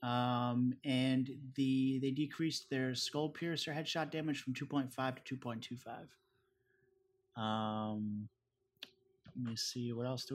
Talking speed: 150 wpm